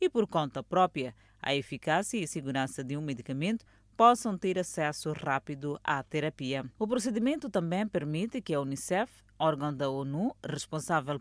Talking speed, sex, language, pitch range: 155 wpm, female, Portuguese, 140-195 Hz